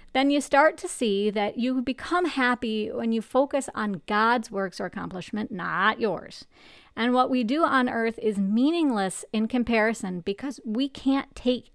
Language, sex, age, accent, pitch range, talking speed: English, female, 40-59, American, 205-255 Hz, 170 wpm